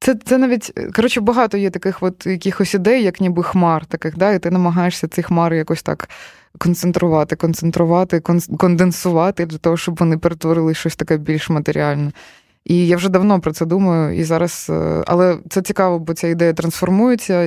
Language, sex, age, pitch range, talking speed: Ukrainian, female, 20-39, 160-185 Hz, 170 wpm